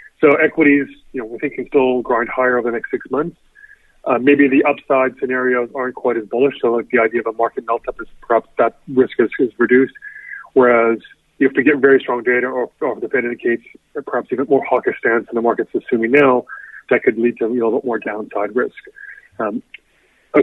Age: 30-49